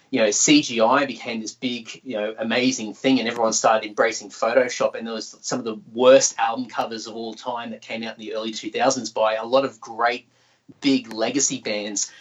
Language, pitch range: English, 110-135 Hz